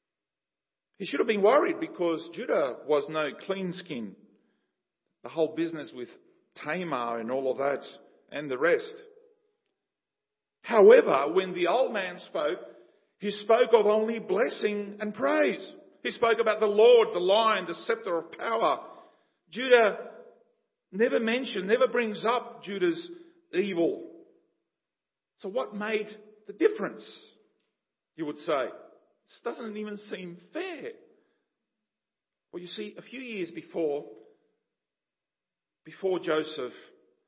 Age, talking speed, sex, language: 50-69, 125 wpm, male, English